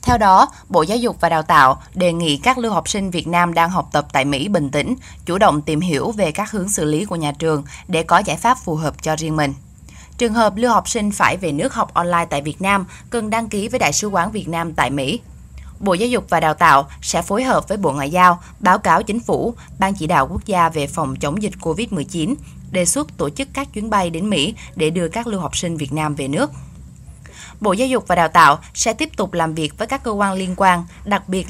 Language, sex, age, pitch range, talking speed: Vietnamese, female, 10-29, 155-205 Hz, 255 wpm